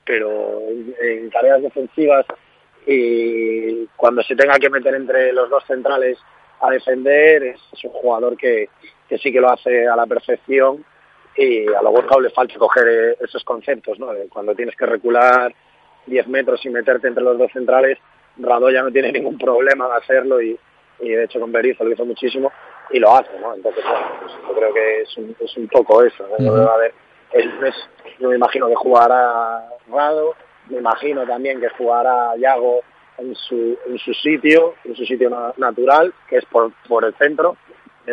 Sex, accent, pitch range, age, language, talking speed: male, Spanish, 120-195 Hz, 30-49, Spanish, 180 wpm